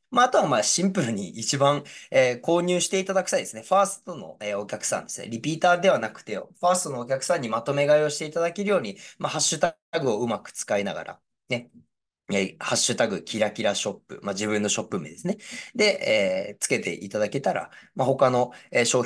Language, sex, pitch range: Japanese, male, 115-180 Hz